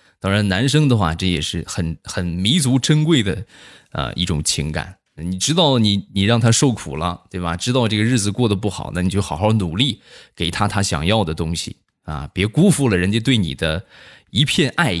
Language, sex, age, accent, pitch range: Chinese, male, 20-39, native, 90-125 Hz